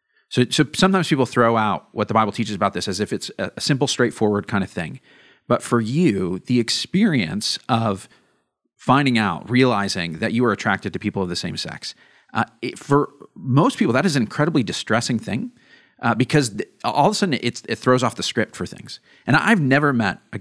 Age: 40-59